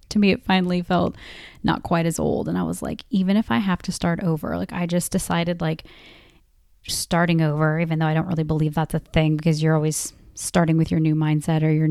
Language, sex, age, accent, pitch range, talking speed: English, female, 30-49, American, 160-180 Hz, 230 wpm